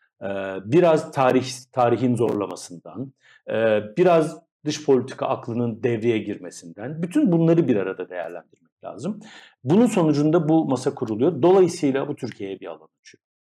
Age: 50-69